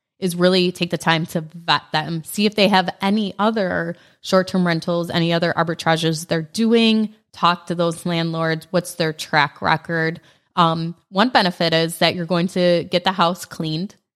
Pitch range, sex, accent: 165-185 Hz, female, American